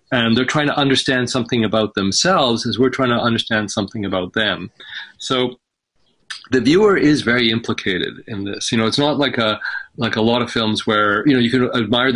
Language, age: English, 40-59